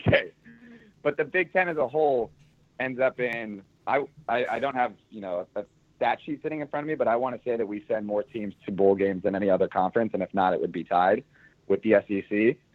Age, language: 30-49, English